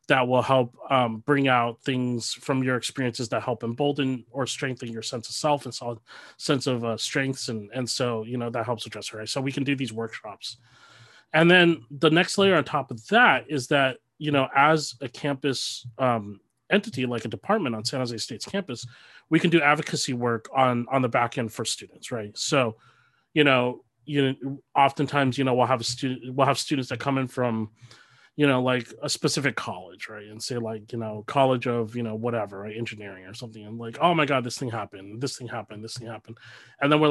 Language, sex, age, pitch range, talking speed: English, male, 30-49, 115-145 Hz, 220 wpm